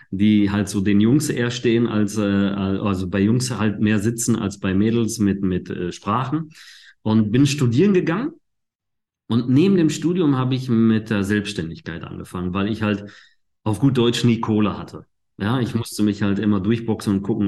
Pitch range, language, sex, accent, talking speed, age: 105-135 Hz, German, male, German, 185 wpm, 40-59